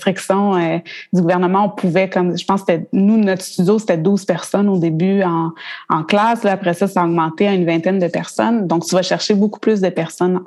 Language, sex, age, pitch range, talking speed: French, female, 20-39, 175-200 Hz, 225 wpm